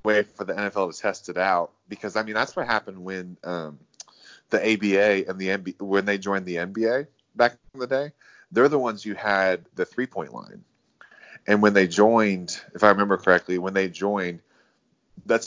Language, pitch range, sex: English, 95-110 Hz, male